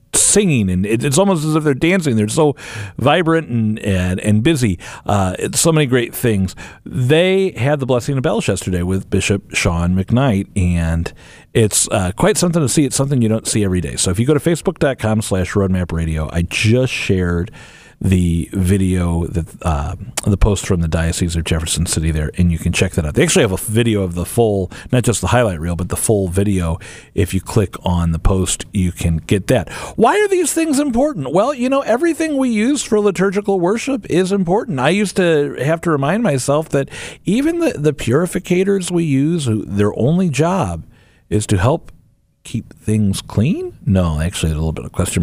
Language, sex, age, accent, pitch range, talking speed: English, male, 40-59, American, 90-150 Hz, 200 wpm